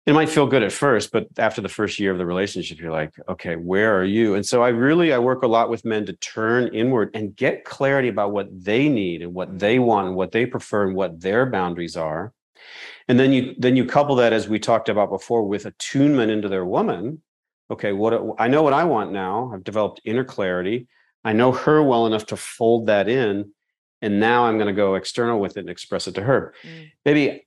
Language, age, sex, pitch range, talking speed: English, 40-59, male, 100-125 Hz, 230 wpm